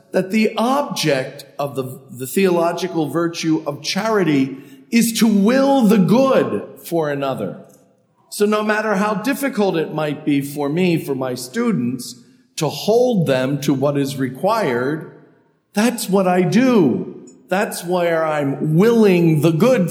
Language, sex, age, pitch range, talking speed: English, male, 50-69, 145-210 Hz, 140 wpm